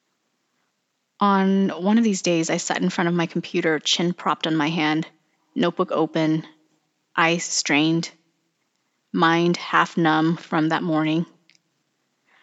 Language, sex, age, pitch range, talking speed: English, female, 30-49, 160-200 Hz, 130 wpm